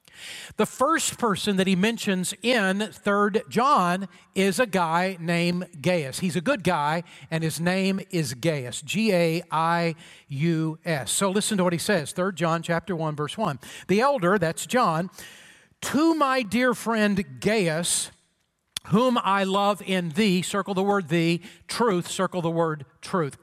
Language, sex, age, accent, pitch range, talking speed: English, male, 40-59, American, 175-220 Hz, 150 wpm